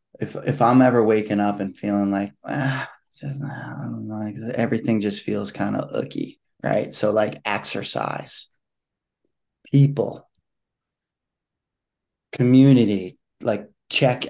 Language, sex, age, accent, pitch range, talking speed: English, male, 20-39, American, 100-115 Hz, 125 wpm